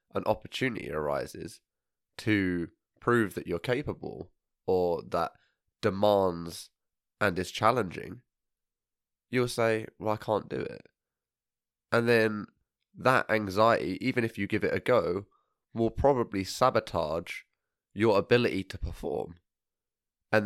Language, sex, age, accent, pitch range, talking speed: English, male, 20-39, British, 90-115 Hz, 115 wpm